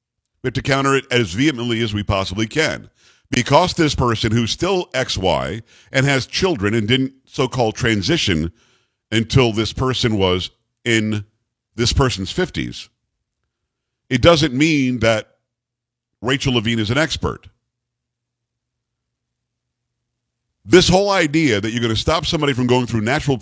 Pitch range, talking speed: 115-140 Hz, 135 wpm